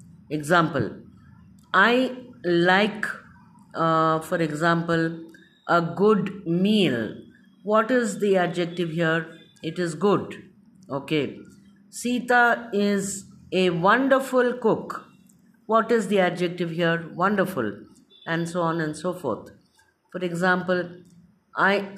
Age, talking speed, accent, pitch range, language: 50-69, 105 wpm, Indian, 170-205 Hz, English